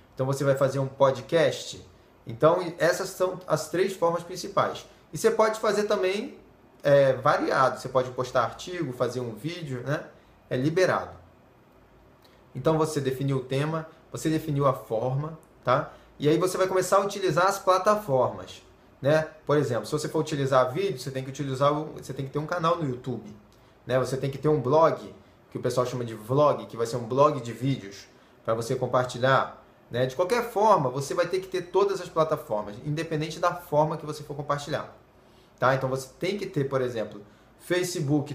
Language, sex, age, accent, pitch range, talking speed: Portuguese, male, 20-39, Brazilian, 130-170 Hz, 180 wpm